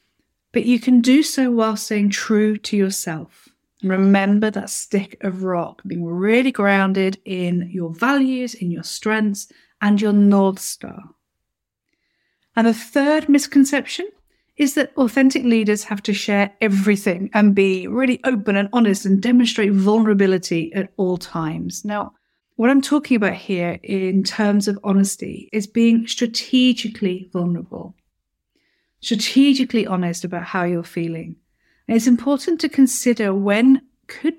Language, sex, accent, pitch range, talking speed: English, female, British, 190-245 Hz, 140 wpm